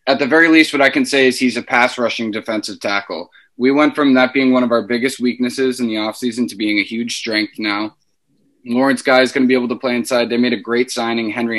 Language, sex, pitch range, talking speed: English, male, 105-130 Hz, 255 wpm